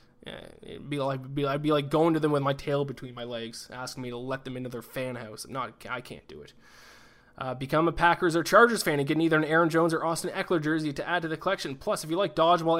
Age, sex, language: 20-39, male, English